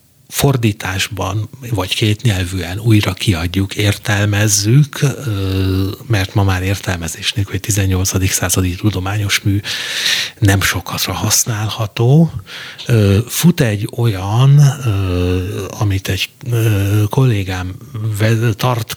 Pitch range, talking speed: 95-120 Hz, 80 wpm